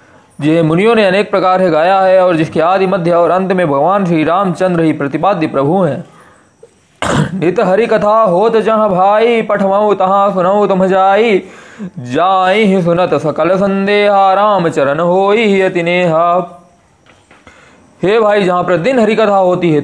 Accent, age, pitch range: native, 20-39, 175-215 Hz